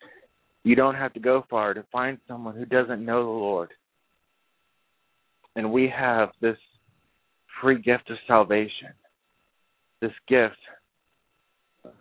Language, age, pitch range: English, 40-59, 105-120 Hz